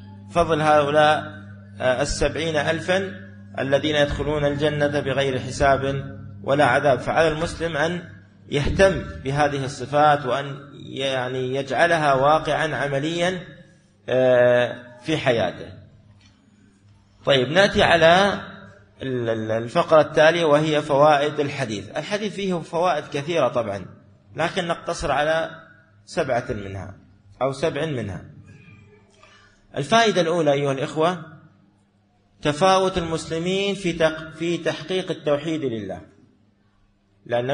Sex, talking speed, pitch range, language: male, 90 wpm, 130-170 Hz, Arabic